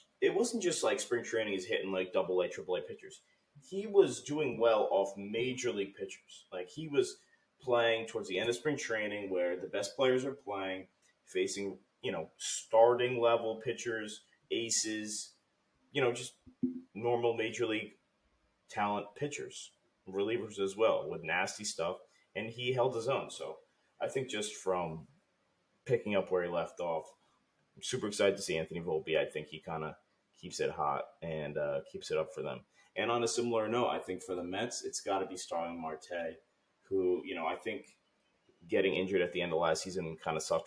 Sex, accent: male, American